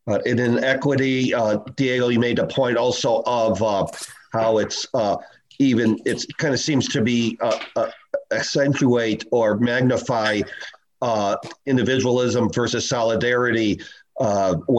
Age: 50-69